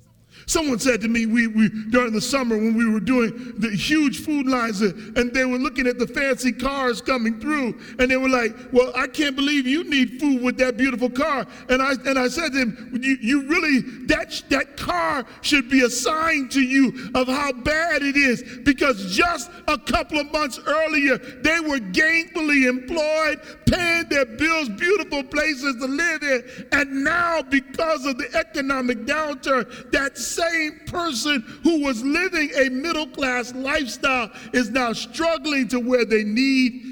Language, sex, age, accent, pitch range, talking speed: English, male, 40-59, American, 235-300 Hz, 175 wpm